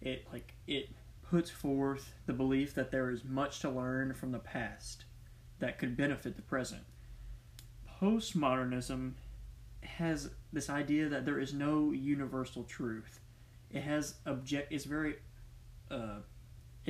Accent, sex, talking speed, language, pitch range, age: American, male, 130 wpm, English, 120-140 Hz, 20-39